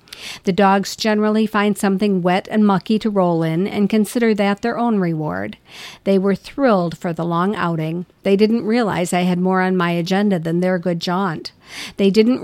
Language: English